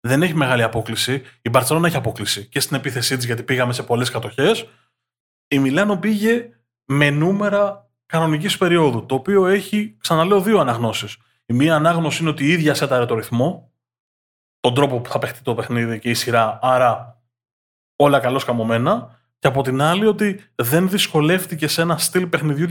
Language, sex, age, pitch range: Greek, male, 20-39, 120-155 Hz